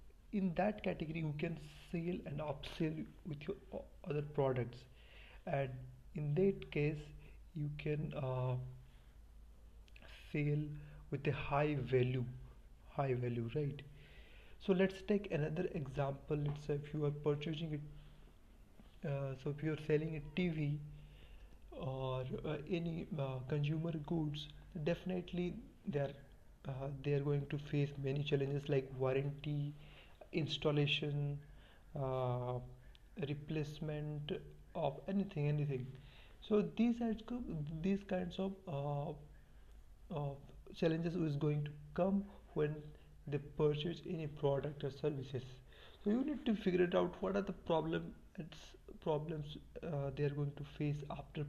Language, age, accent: English, 30-49, Indian